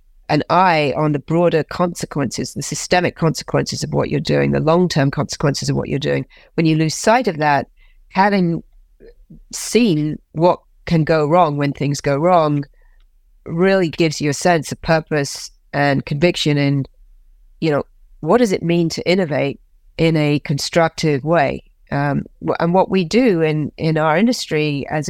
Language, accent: English, British